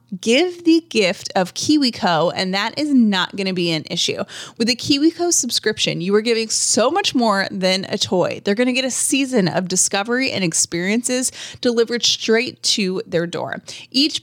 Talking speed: 180 wpm